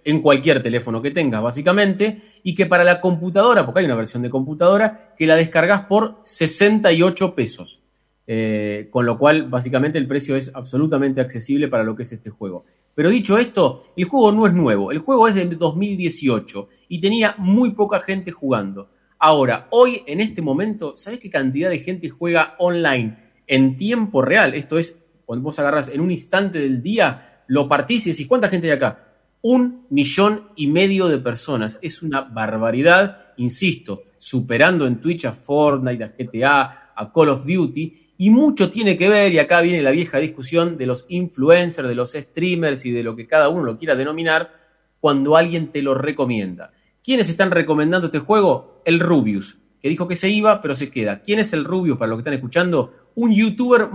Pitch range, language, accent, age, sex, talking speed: 135-190 Hz, Spanish, Argentinian, 30-49, male, 190 wpm